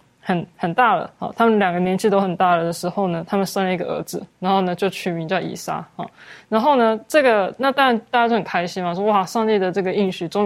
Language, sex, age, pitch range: Chinese, female, 20-39, 185-230 Hz